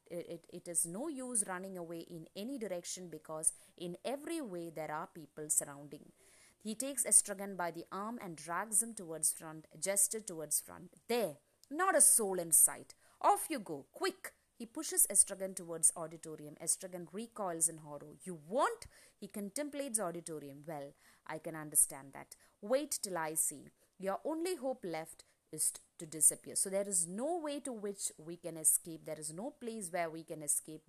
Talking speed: 175 wpm